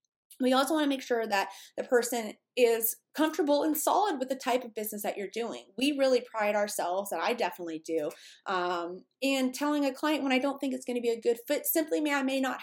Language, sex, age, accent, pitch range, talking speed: English, female, 20-39, American, 205-265 Hz, 240 wpm